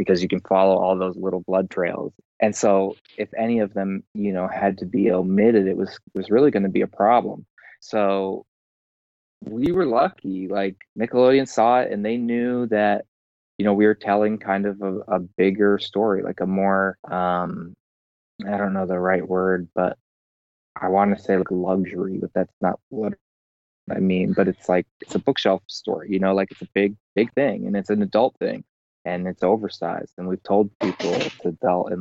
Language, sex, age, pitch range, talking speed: English, male, 20-39, 90-100 Hz, 200 wpm